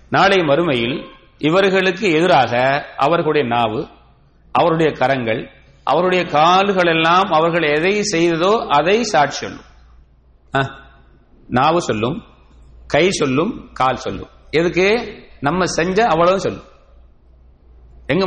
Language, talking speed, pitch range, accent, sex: English, 90 wpm, 110-170 Hz, Indian, male